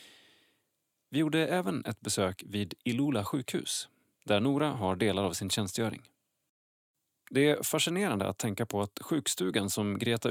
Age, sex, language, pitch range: 30-49, male, Swedish, 105-140 Hz